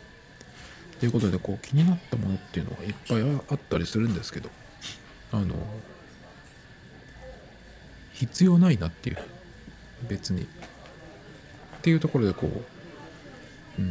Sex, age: male, 50-69